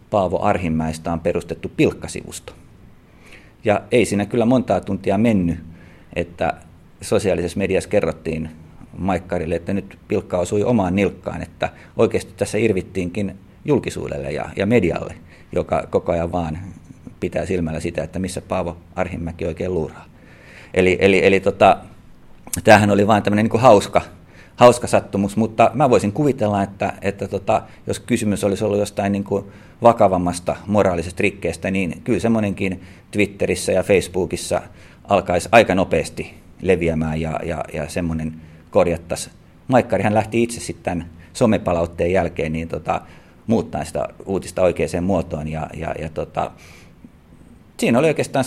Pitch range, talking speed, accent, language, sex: 85-100 Hz, 130 wpm, native, Finnish, male